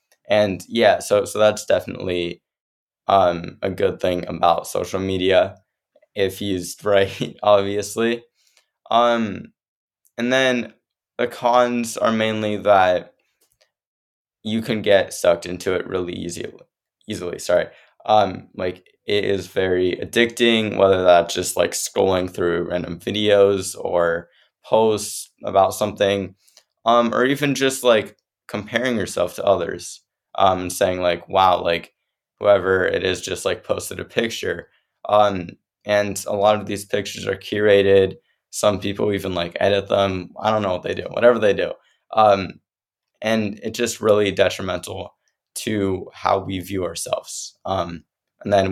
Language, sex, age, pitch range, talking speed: English, male, 20-39, 95-110 Hz, 140 wpm